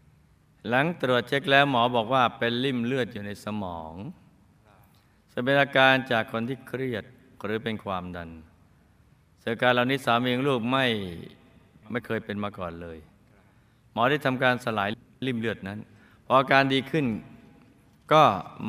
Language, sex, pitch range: Thai, male, 100-130 Hz